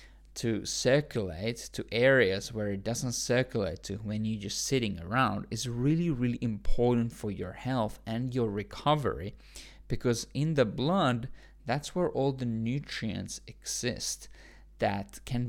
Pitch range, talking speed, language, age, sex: 105-120 Hz, 140 wpm, English, 20-39, male